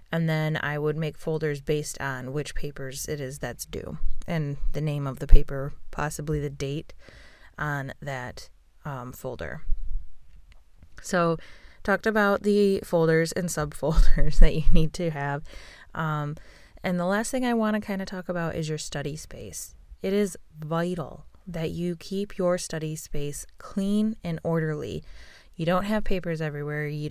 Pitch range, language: 145-170 Hz, English